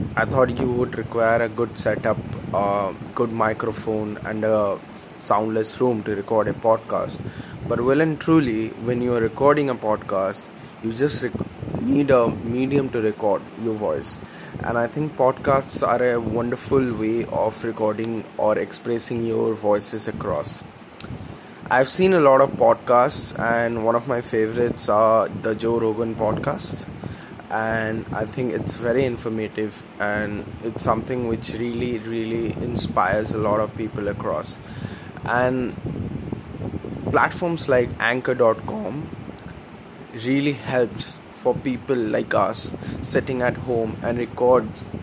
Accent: Indian